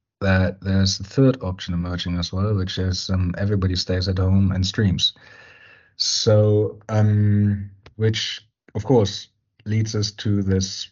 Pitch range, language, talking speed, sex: 95-110 Hz, English, 145 wpm, male